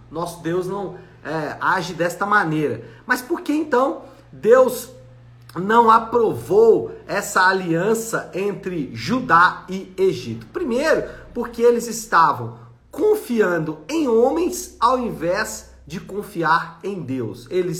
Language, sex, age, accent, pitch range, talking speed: Portuguese, male, 50-69, Brazilian, 170-260 Hz, 110 wpm